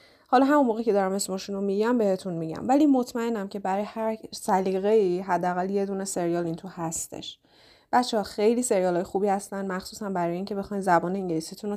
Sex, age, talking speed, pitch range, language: female, 30-49, 190 wpm, 180-225 Hz, Persian